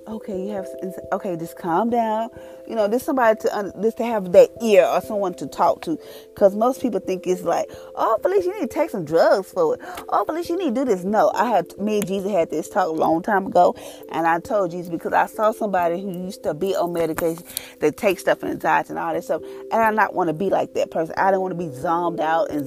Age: 30-49